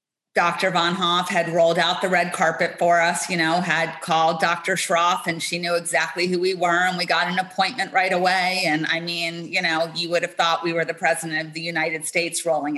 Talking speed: 230 wpm